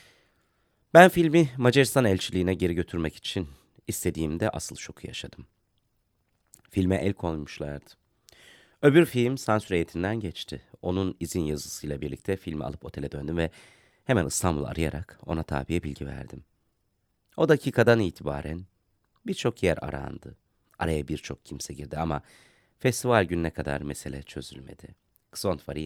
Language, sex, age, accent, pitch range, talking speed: Turkish, male, 30-49, native, 80-110 Hz, 120 wpm